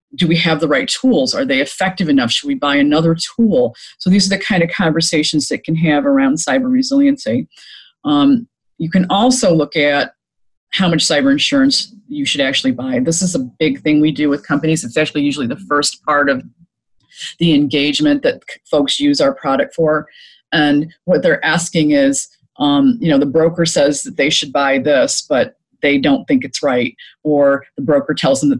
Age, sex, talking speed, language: 30-49, female, 195 wpm, English